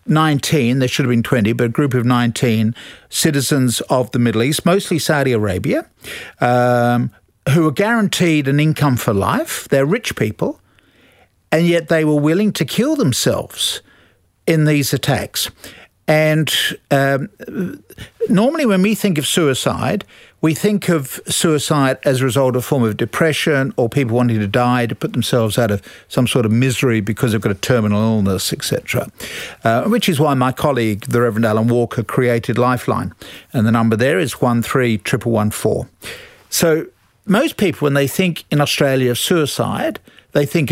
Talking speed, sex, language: 170 wpm, male, English